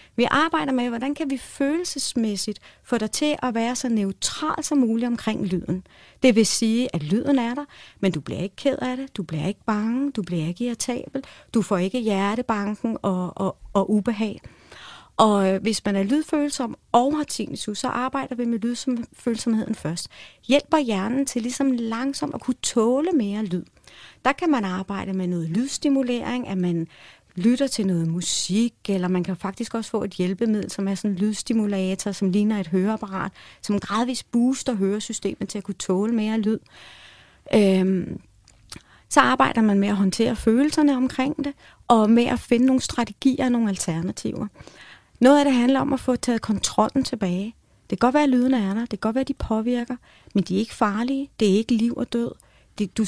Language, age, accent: Danish, 30-49, native